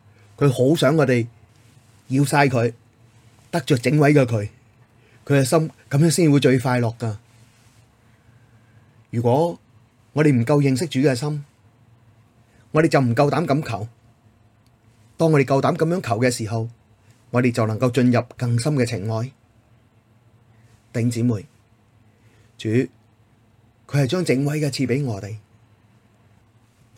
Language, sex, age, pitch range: Chinese, male, 30-49, 115-130 Hz